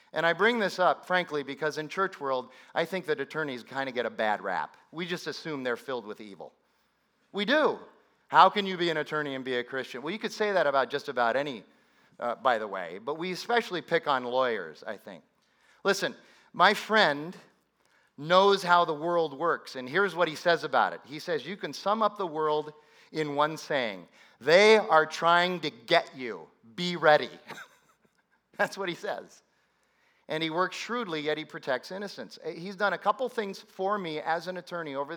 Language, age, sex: English, 40-59, male